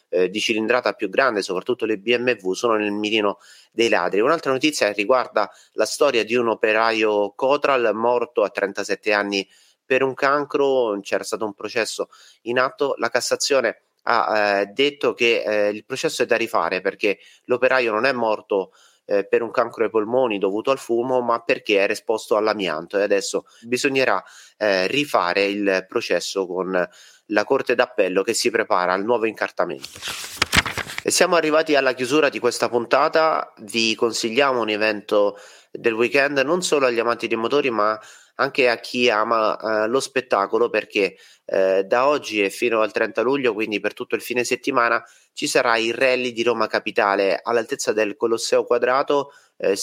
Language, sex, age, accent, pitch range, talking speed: Italian, male, 30-49, native, 105-135 Hz, 165 wpm